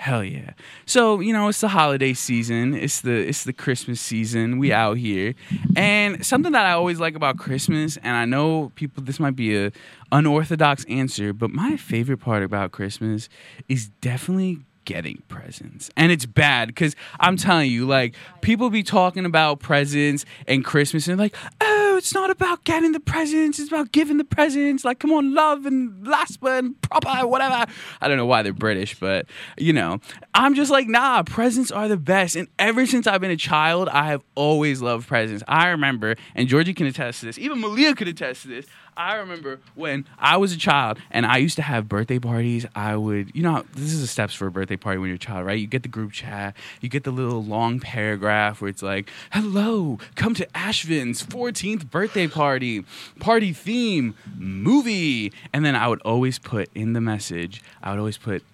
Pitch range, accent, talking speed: 115-195 Hz, American, 200 wpm